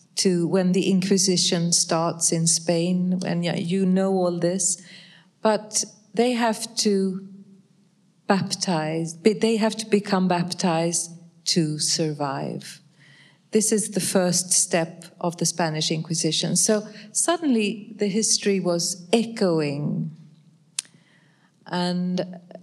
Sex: female